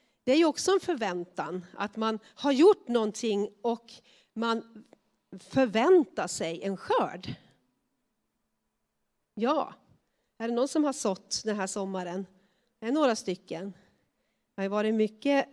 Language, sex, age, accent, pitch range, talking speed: Swedish, female, 40-59, native, 195-260 Hz, 130 wpm